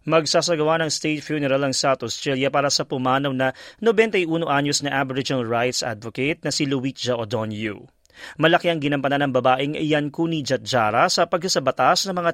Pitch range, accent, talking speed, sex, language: 140-210 Hz, native, 150 wpm, male, Filipino